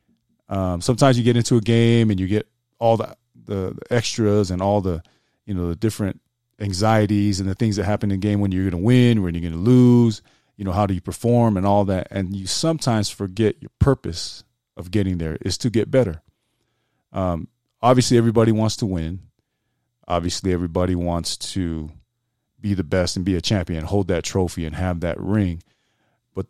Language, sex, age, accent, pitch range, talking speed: English, male, 30-49, American, 95-115 Hz, 195 wpm